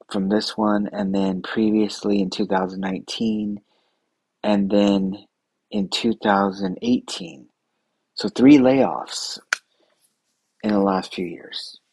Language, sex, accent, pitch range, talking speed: English, male, American, 95-105 Hz, 100 wpm